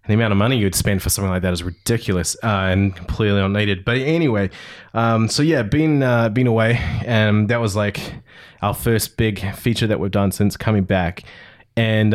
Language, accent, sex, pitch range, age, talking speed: English, Australian, male, 100-115 Hz, 20-39, 200 wpm